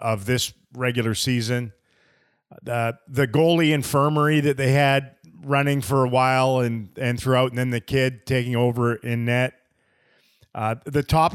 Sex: male